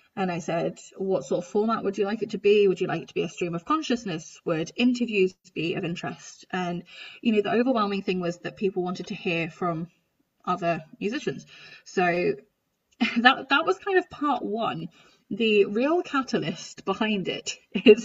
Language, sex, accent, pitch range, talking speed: English, female, British, 190-255 Hz, 190 wpm